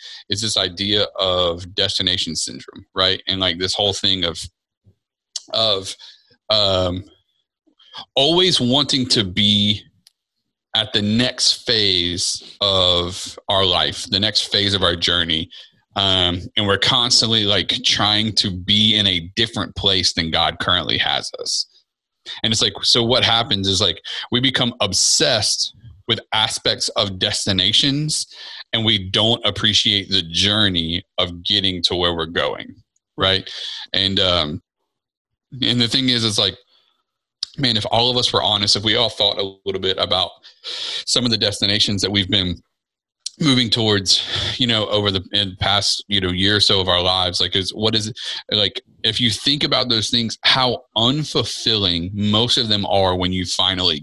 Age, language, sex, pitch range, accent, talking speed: 30-49, English, male, 95-115 Hz, American, 160 wpm